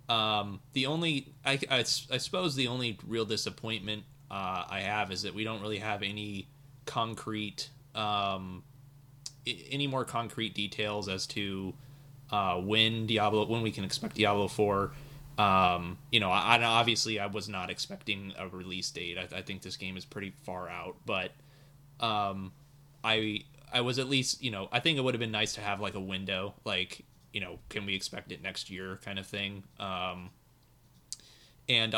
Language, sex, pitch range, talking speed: English, male, 100-125 Hz, 180 wpm